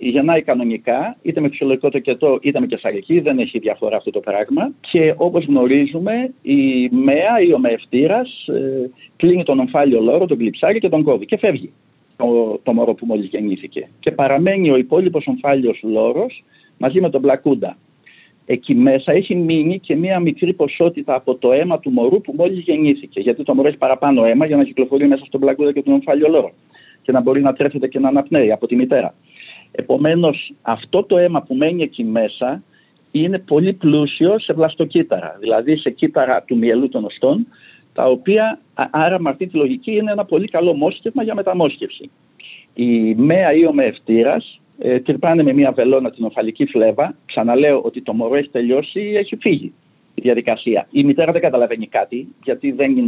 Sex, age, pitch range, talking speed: male, 50-69, 130-195 Hz, 180 wpm